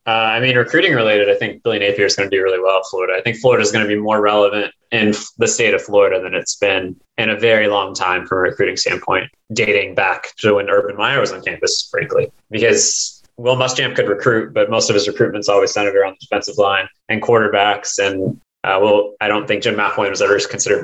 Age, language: 20-39, English